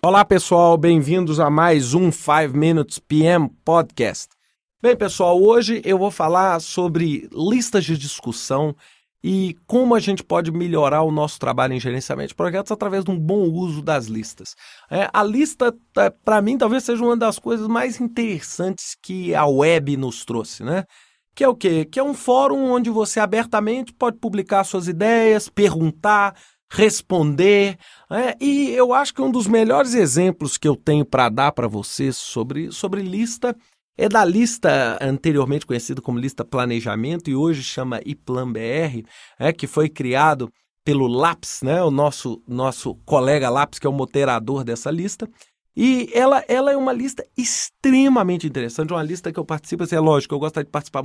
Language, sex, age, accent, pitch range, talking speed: Portuguese, male, 40-59, Brazilian, 145-220 Hz, 170 wpm